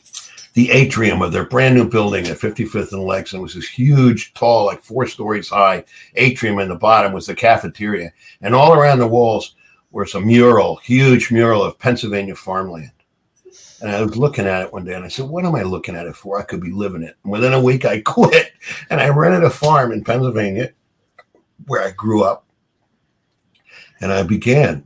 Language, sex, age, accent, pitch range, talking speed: English, male, 60-79, American, 95-125 Hz, 195 wpm